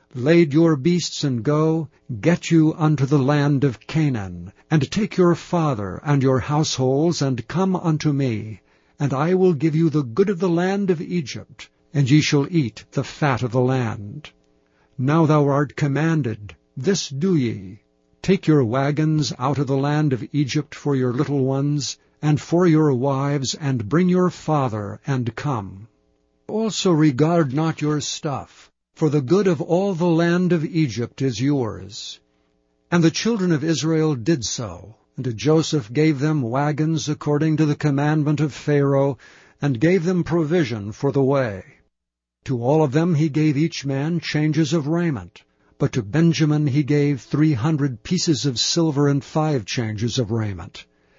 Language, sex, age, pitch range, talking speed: English, male, 60-79, 130-160 Hz, 165 wpm